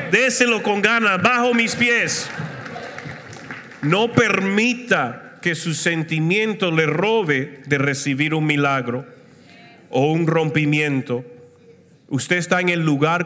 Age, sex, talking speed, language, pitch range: 40-59, male, 115 wpm, Spanish, 130-165 Hz